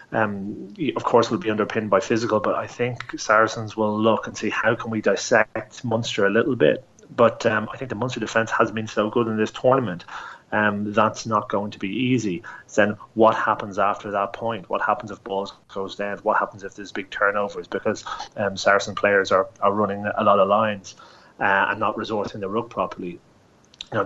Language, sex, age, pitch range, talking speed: English, male, 30-49, 105-115 Hz, 210 wpm